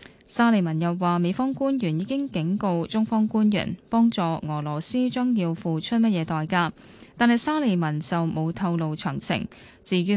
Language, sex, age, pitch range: Chinese, female, 10-29, 170-230 Hz